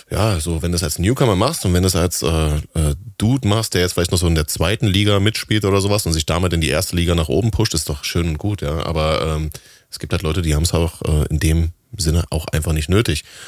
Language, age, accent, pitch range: German, 30-49, German, 85-105 Hz